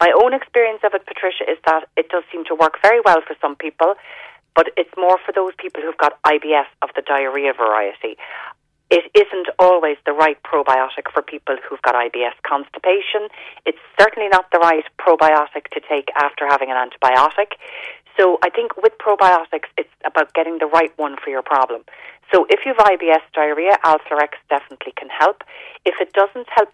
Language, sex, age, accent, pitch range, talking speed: English, female, 40-59, Irish, 150-190 Hz, 185 wpm